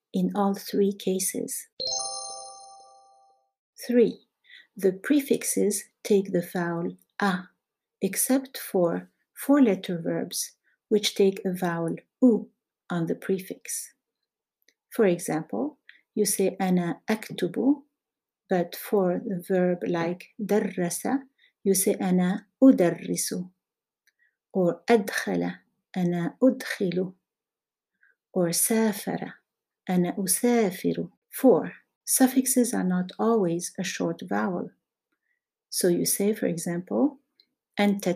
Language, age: Arabic, 50-69